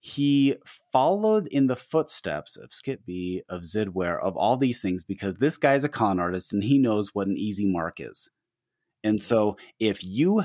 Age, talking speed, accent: 30-49, 185 wpm, American